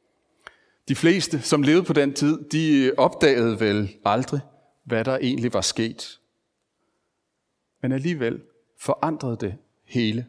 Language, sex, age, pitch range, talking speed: Danish, male, 40-59, 130-180 Hz, 120 wpm